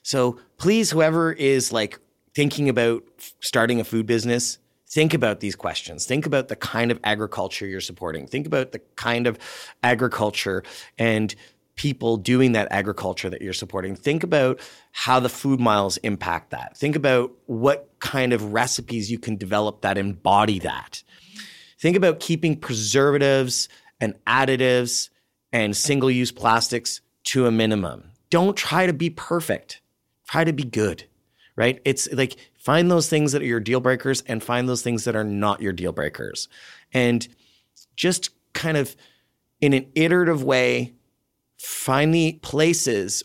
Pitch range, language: 110-140 Hz, English